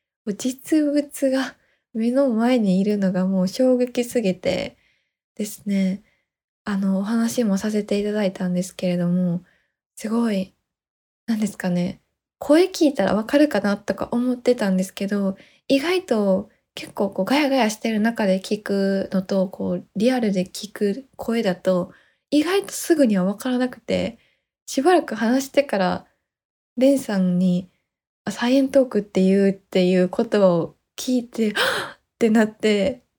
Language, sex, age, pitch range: Japanese, female, 20-39, 190-245 Hz